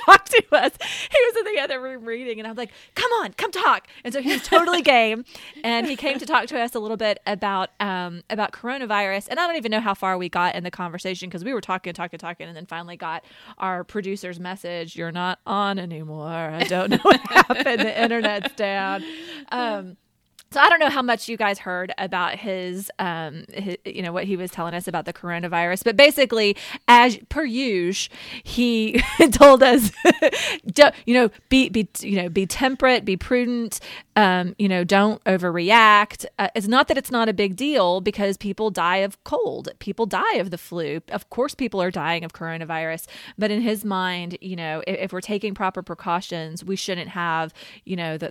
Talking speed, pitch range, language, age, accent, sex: 205 wpm, 180-245 Hz, English, 20-39, American, female